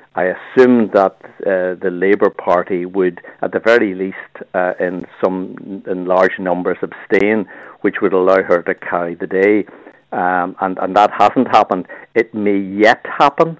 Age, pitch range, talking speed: 50-69, 90-105 Hz, 165 wpm